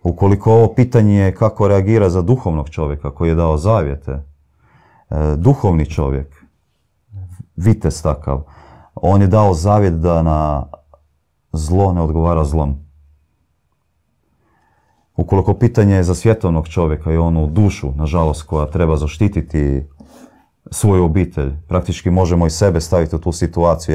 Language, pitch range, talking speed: Croatian, 75-90 Hz, 130 wpm